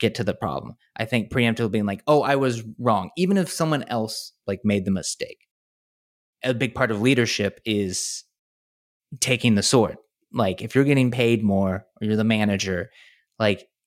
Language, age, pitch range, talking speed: English, 20-39, 105-130 Hz, 175 wpm